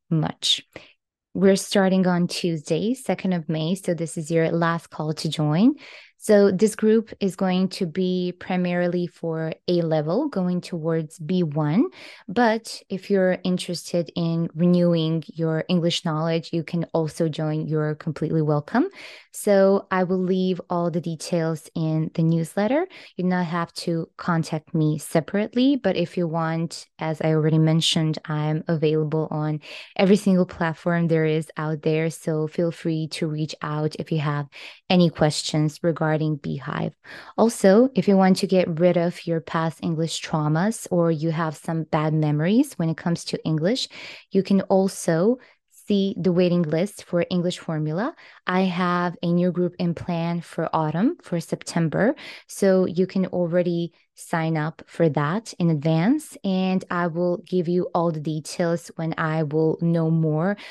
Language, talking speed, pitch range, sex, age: English, 160 wpm, 160-185 Hz, female, 20-39